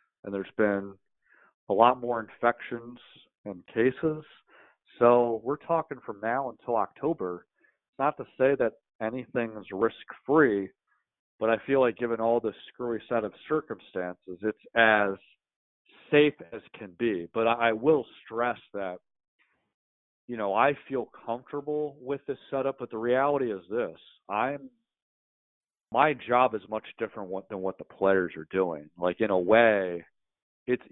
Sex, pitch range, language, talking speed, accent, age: male, 95-120 Hz, English, 145 wpm, American, 40-59